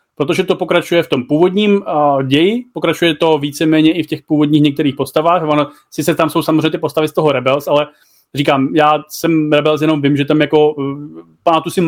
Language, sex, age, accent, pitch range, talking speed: Czech, male, 30-49, native, 145-170 Hz, 185 wpm